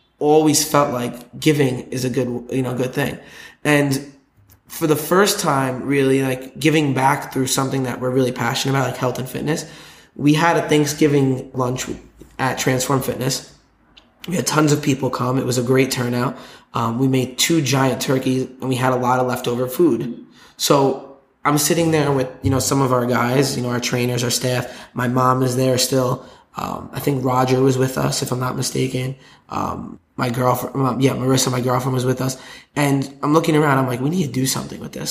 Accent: American